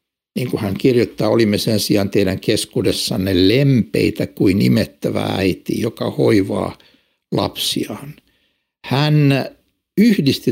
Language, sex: Finnish, male